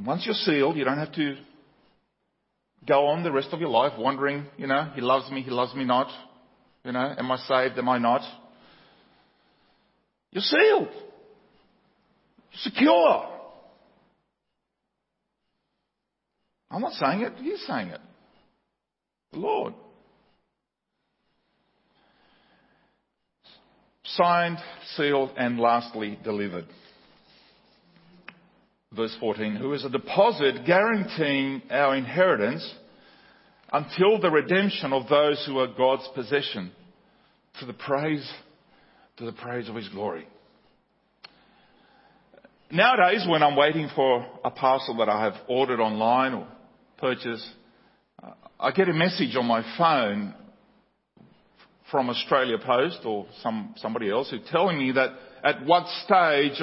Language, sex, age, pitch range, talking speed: English, male, 50-69, 125-175 Hz, 120 wpm